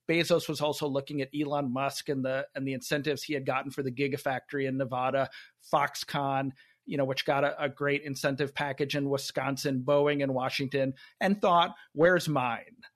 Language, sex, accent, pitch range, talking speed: English, male, American, 135-155 Hz, 180 wpm